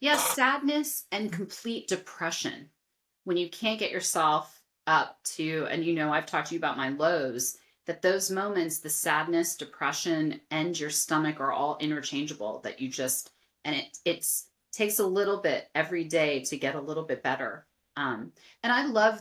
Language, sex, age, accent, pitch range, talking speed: English, female, 30-49, American, 155-210 Hz, 170 wpm